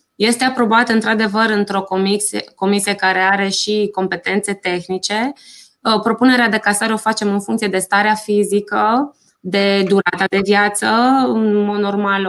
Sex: female